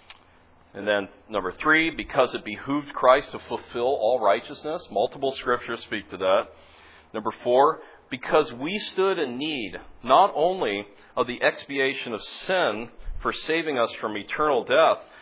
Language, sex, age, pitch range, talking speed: English, male, 40-59, 100-150 Hz, 145 wpm